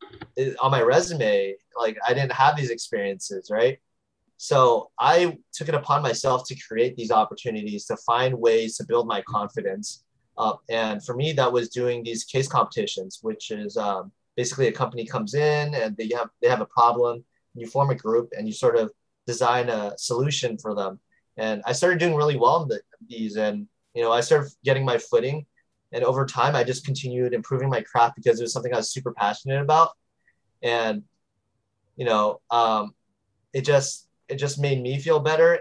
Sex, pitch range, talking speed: male, 115-150 Hz, 190 wpm